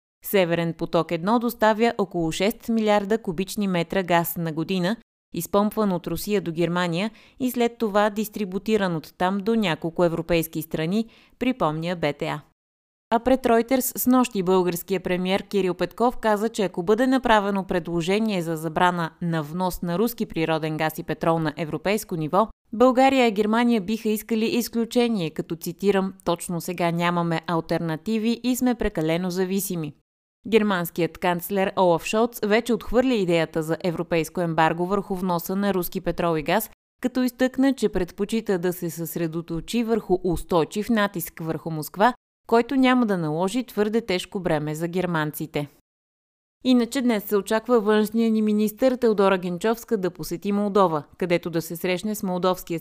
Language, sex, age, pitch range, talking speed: Bulgarian, female, 20-39, 170-220 Hz, 150 wpm